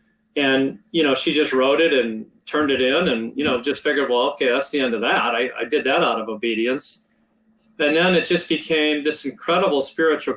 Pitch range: 135-180 Hz